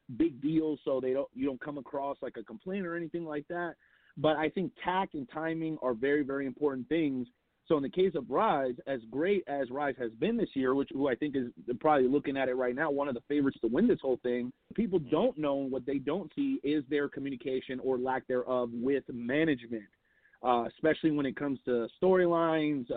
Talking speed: 215 wpm